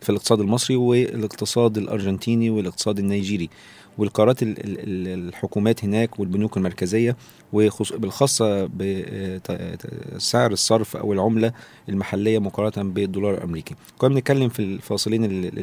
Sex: male